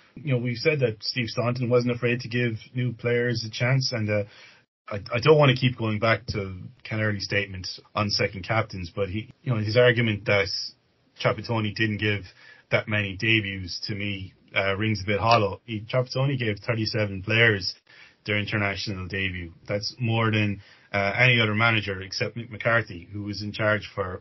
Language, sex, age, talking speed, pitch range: English, male, 30-49, 180 wpm, 105-120 Hz